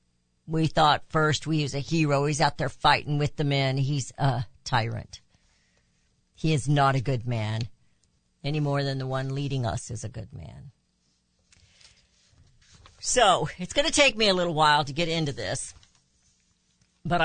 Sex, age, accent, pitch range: female, 50-69, American, 130-175 Hz